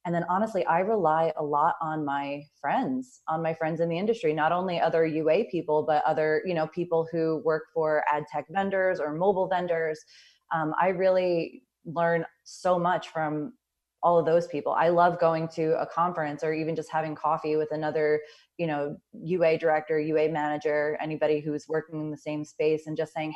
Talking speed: 195 wpm